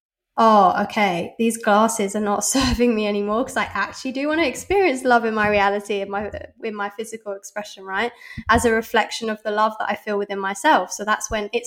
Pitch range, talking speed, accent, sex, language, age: 200-230 Hz, 215 wpm, British, female, English, 10-29